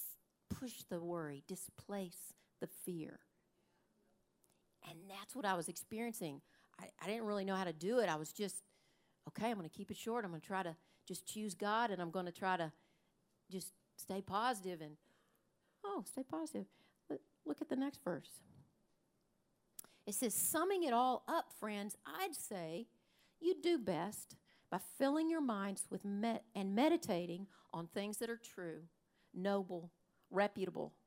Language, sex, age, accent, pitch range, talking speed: English, female, 50-69, American, 180-240 Hz, 160 wpm